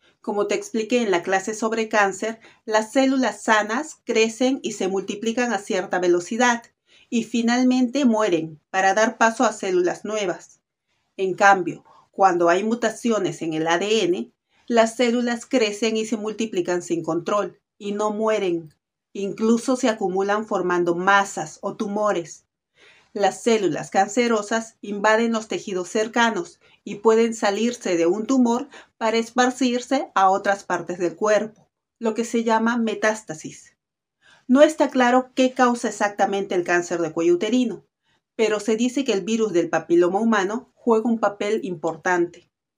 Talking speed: 145 wpm